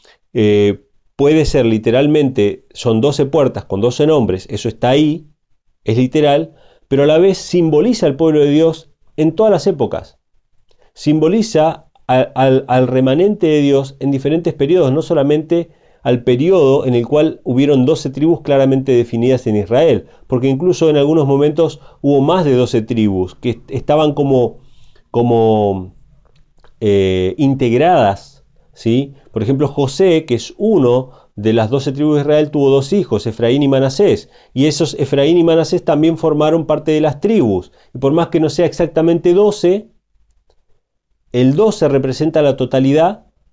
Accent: Argentinian